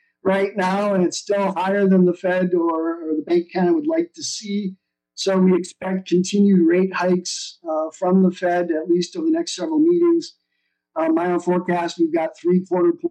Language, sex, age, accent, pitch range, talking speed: English, male, 50-69, American, 170-220 Hz, 205 wpm